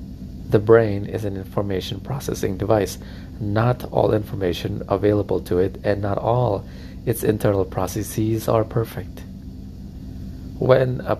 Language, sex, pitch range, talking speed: English, male, 90-110 Hz, 125 wpm